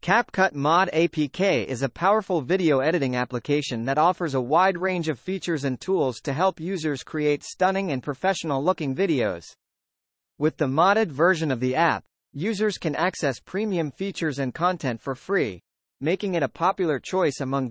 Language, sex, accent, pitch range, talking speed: English, male, American, 140-190 Hz, 165 wpm